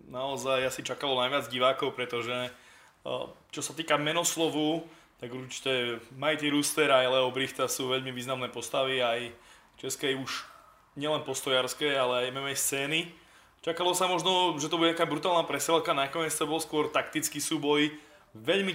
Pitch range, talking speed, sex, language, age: 135-165 Hz, 150 wpm, male, Slovak, 20-39